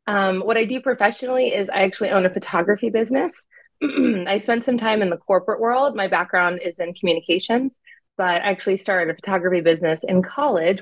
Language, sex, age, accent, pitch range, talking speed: English, female, 30-49, American, 170-220 Hz, 190 wpm